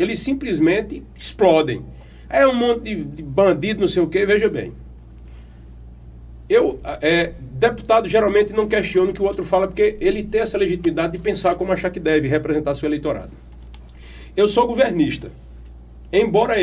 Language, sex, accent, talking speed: Portuguese, male, Brazilian, 150 wpm